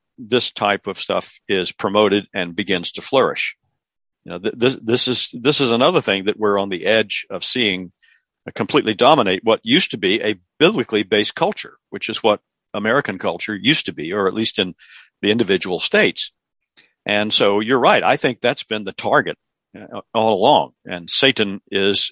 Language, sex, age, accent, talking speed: English, male, 50-69, American, 180 wpm